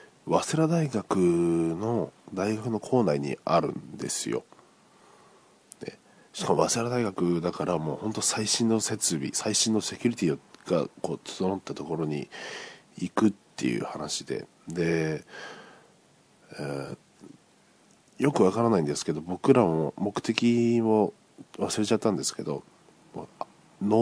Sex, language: male, Japanese